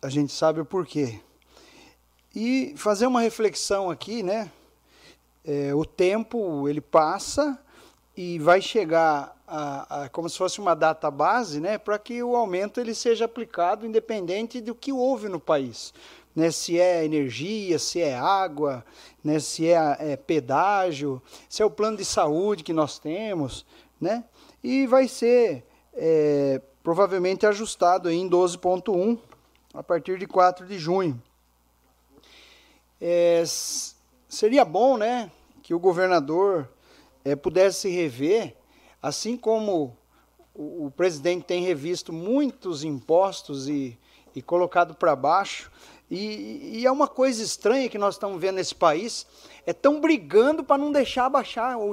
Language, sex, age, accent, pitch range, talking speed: Portuguese, male, 40-59, Brazilian, 155-230 Hz, 140 wpm